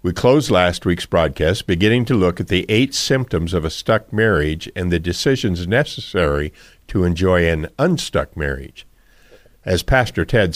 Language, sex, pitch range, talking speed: English, male, 90-120 Hz, 160 wpm